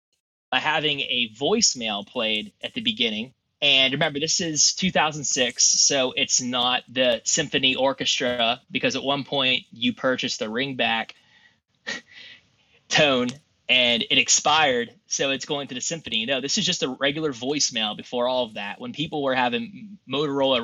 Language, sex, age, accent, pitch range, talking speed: English, male, 20-39, American, 125-185 Hz, 155 wpm